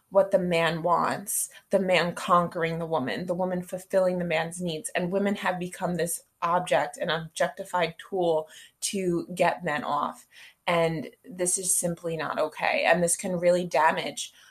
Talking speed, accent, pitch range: 160 wpm, American, 165-200 Hz